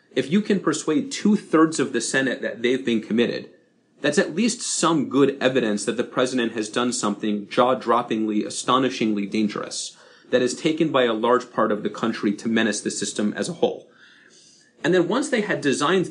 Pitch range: 110-150 Hz